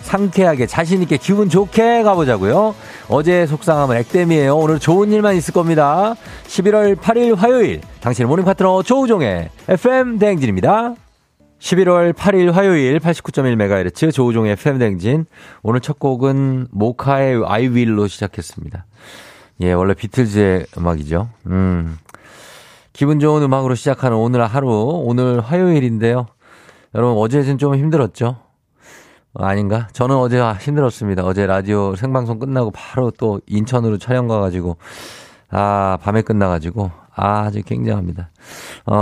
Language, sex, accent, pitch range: Korean, male, native, 100-150 Hz